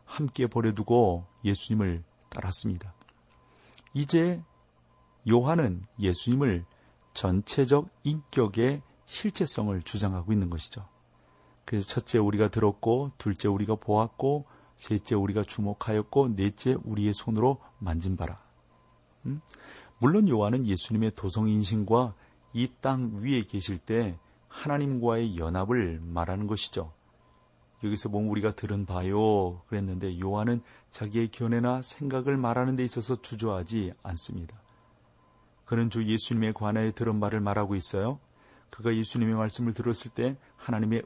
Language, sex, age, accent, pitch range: Korean, male, 40-59, native, 100-125 Hz